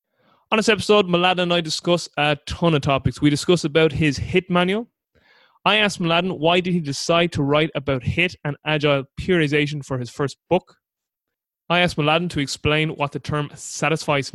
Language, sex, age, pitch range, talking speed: English, male, 20-39, 145-170 Hz, 185 wpm